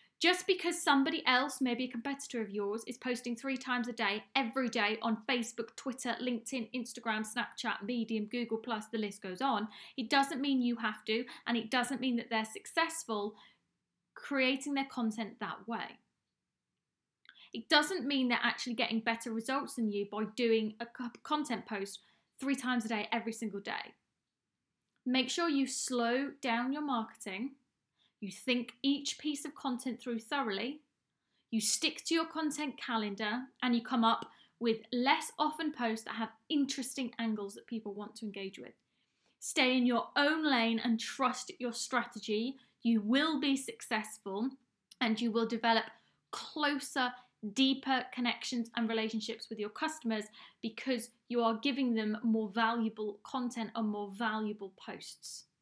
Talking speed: 155 wpm